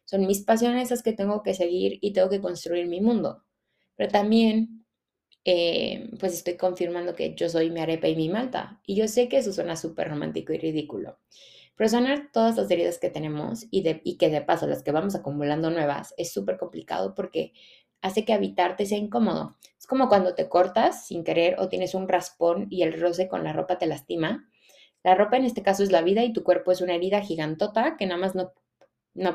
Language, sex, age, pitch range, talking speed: Spanish, female, 20-39, 170-220 Hz, 215 wpm